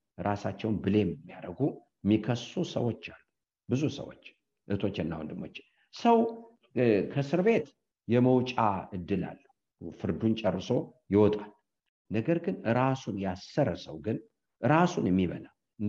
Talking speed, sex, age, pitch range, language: 115 wpm, male, 50-69, 100-135 Hz, English